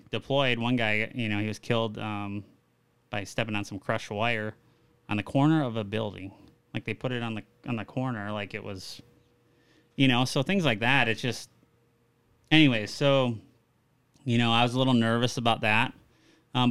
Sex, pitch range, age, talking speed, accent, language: male, 110-125 Hz, 20-39, 190 wpm, American, English